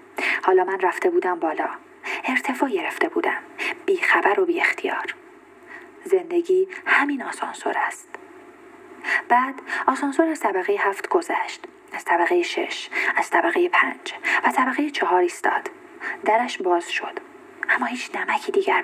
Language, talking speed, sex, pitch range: Persian, 125 wpm, female, 290-385 Hz